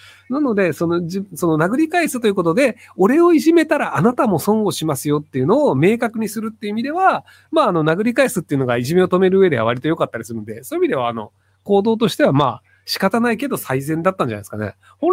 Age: 40-59